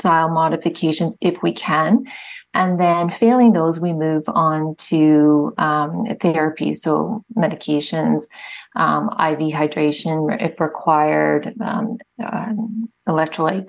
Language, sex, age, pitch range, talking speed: English, female, 30-49, 155-190 Hz, 105 wpm